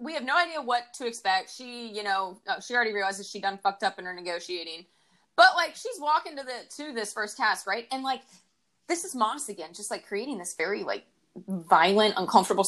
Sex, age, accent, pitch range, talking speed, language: female, 20-39, American, 190-245 Hz, 215 wpm, English